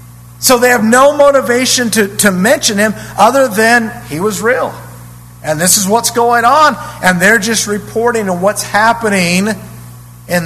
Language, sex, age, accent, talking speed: English, male, 50-69, American, 160 wpm